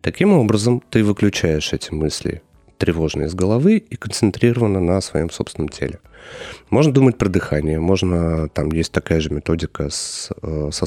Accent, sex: native, male